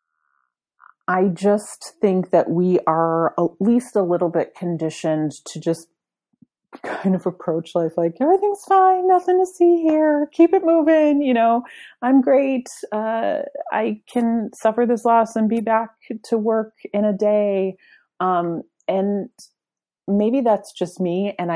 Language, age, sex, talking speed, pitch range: English, 30-49, female, 150 wpm, 160-225 Hz